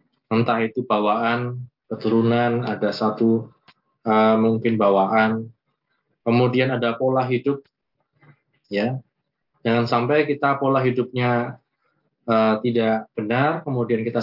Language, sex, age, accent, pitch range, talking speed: Indonesian, male, 20-39, native, 110-125 Hz, 100 wpm